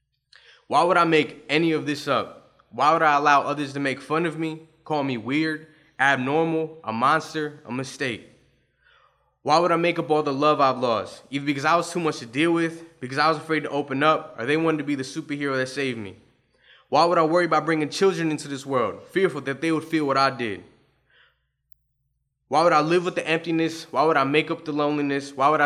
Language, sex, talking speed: English, male, 225 wpm